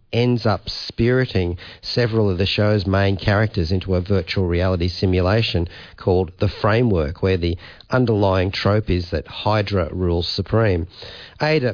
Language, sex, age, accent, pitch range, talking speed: English, male, 40-59, Australian, 95-120 Hz, 140 wpm